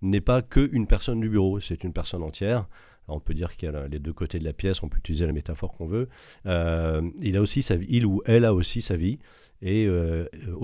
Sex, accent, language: male, French, French